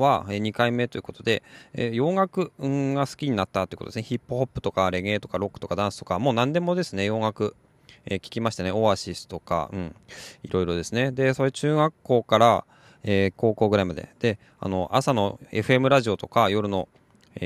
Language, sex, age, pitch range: Japanese, male, 20-39, 100-135 Hz